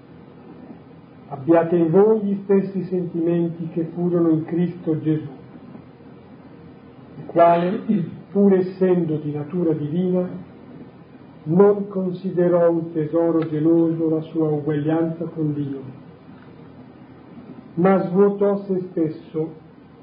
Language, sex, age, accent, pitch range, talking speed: Italian, male, 40-59, native, 155-180 Hz, 95 wpm